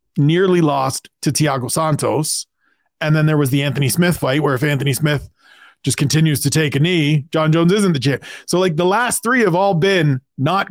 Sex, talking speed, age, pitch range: male, 205 wpm, 40-59, 140-175 Hz